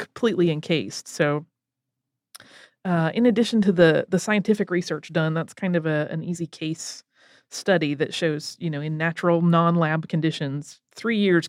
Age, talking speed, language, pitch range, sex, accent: 30-49, 150 wpm, English, 170-230 Hz, female, American